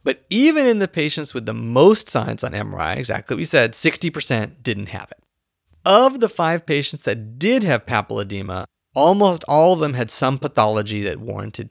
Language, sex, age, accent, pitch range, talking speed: English, male, 30-49, American, 110-150 Hz, 185 wpm